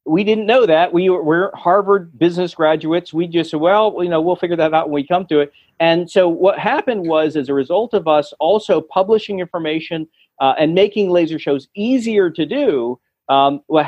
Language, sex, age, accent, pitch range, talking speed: English, male, 40-59, American, 135-180 Hz, 210 wpm